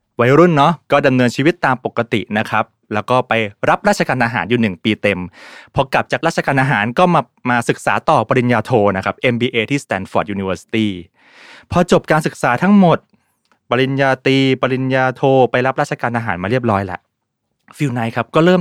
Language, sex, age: Thai, male, 20-39